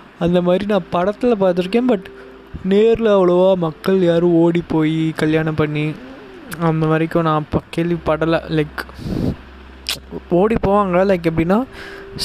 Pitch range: 150-170 Hz